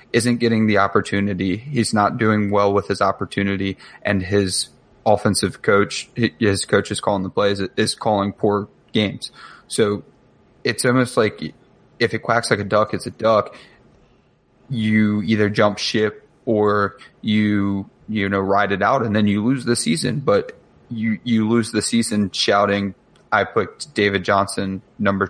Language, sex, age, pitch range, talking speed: English, male, 20-39, 100-115 Hz, 160 wpm